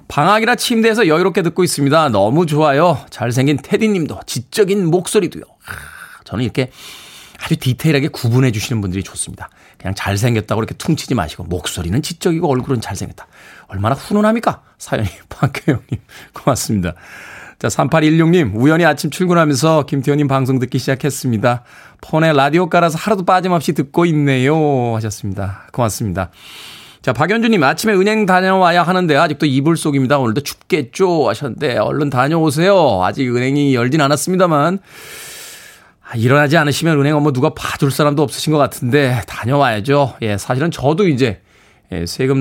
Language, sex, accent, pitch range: Korean, male, native, 120-165 Hz